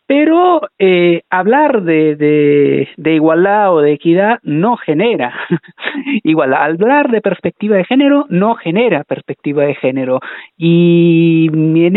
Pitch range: 145-225 Hz